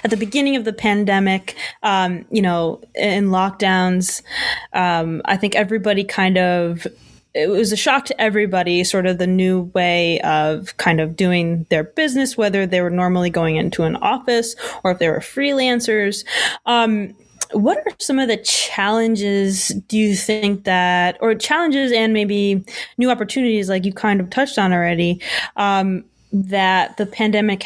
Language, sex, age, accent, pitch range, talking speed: English, female, 20-39, American, 185-220 Hz, 165 wpm